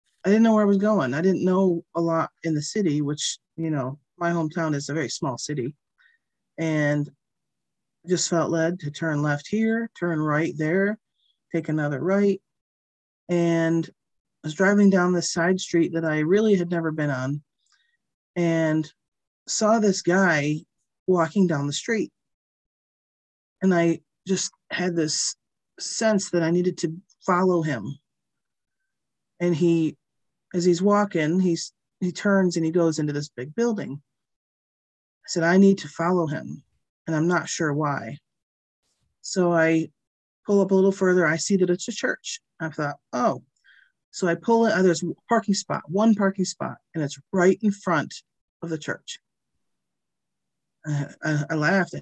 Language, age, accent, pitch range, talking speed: English, 40-59, American, 155-190 Hz, 165 wpm